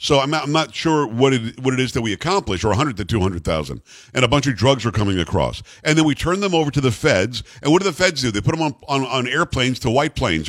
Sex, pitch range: male, 110-150 Hz